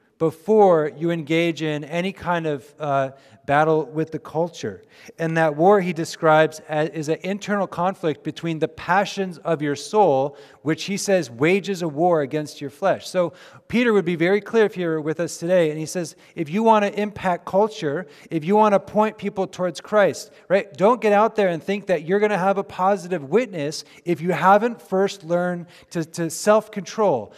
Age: 30-49